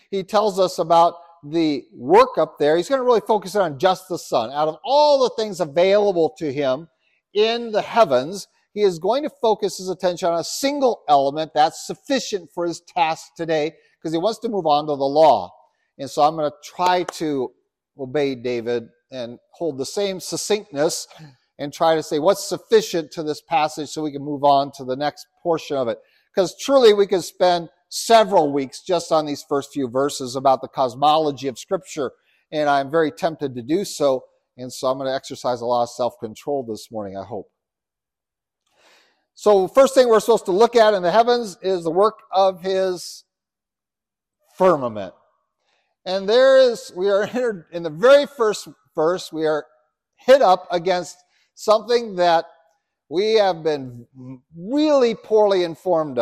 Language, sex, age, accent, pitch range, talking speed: English, male, 50-69, American, 145-200 Hz, 180 wpm